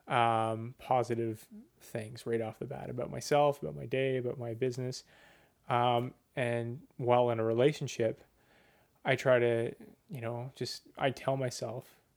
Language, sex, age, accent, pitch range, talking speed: English, male, 20-39, American, 115-130 Hz, 150 wpm